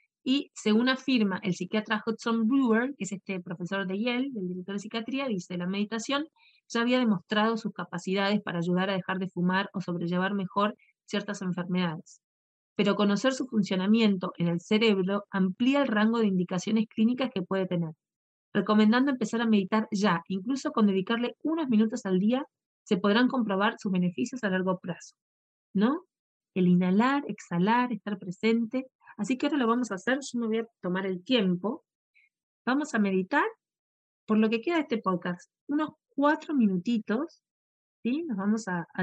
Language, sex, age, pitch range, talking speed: Spanish, female, 30-49, 190-240 Hz, 170 wpm